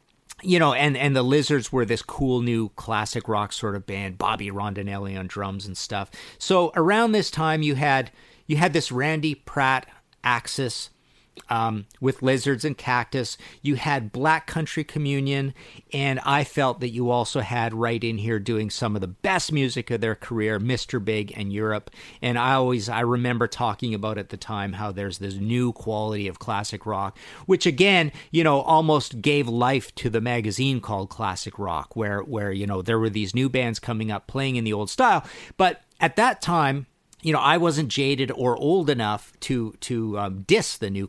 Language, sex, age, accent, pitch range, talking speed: English, male, 40-59, American, 105-140 Hz, 190 wpm